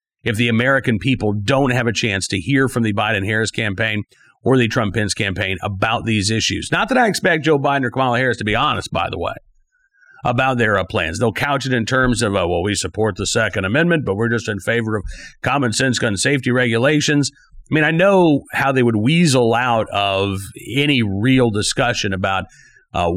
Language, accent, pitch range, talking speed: English, American, 100-135 Hz, 205 wpm